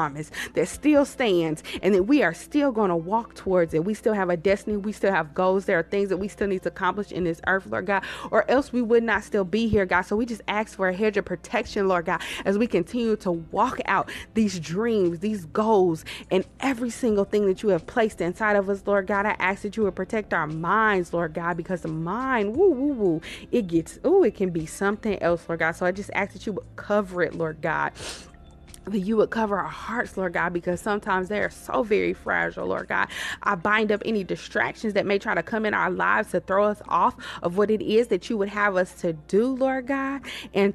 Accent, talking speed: American, 240 wpm